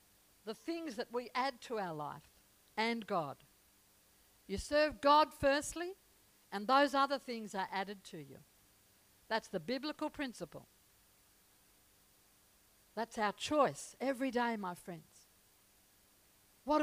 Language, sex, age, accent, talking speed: English, female, 60-79, Australian, 120 wpm